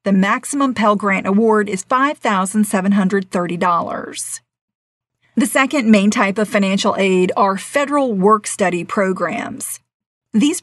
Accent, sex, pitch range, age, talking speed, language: American, female, 195-230 Hz, 40-59, 115 wpm, English